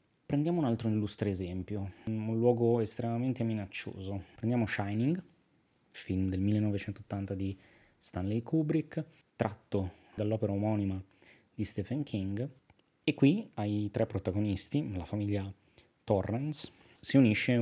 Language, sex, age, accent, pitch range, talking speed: Italian, male, 20-39, native, 100-115 Hz, 110 wpm